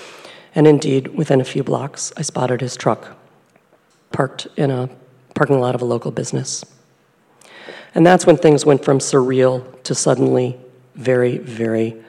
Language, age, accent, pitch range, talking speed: English, 40-59, American, 120-150 Hz, 150 wpm